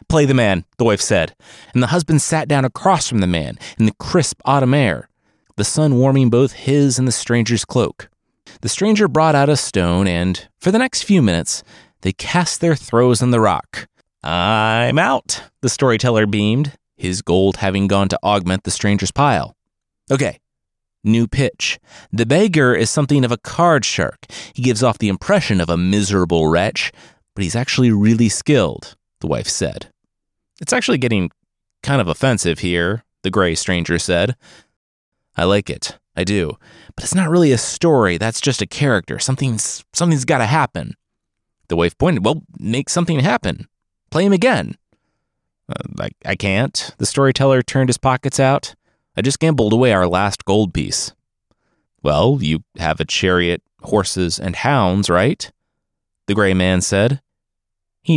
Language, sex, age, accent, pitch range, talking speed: English, male, 30-49, American, 95-135 Hz, 165 wpm